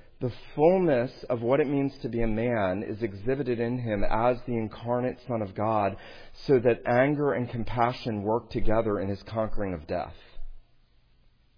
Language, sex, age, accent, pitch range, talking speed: English, male, 40-59, American, 100-125 Hz, 165 wpm